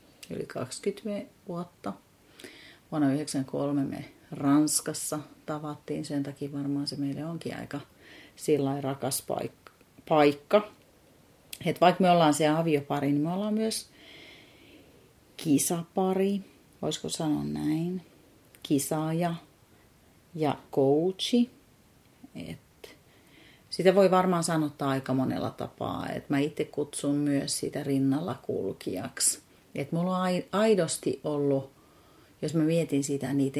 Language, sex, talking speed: Finnish, female, 110 wpm